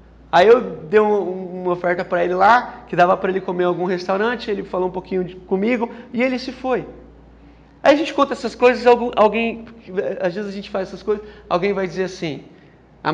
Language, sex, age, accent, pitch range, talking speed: Portuguese, male, 30-49, Brazilian, 185-245 Hz, 205 wpm